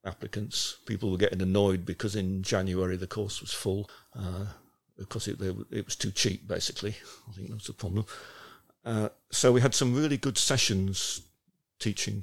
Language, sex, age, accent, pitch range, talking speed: English, male, 50-69, British, 95-110 Hz, 165 wpm